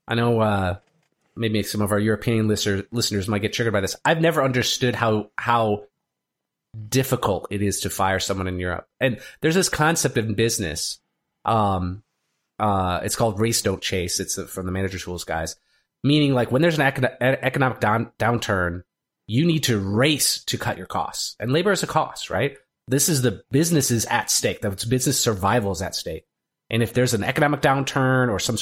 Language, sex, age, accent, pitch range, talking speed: English, male, 30-49, American, 105-140 Hz, 180 wpm